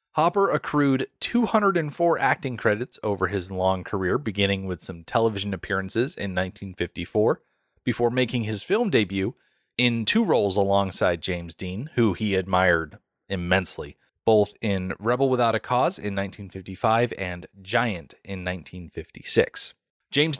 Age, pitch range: 30-49, 95-120 Hz